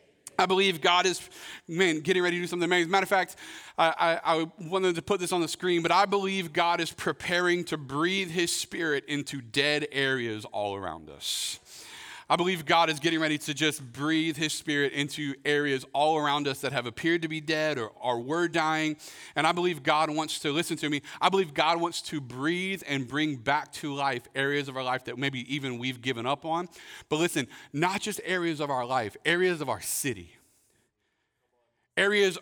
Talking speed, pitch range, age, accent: 205 wpm, 145-180 Hz, 40-59, American